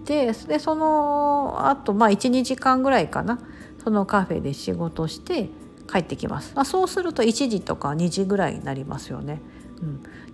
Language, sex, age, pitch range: Japanese, female, 50-69, 170-255 Hz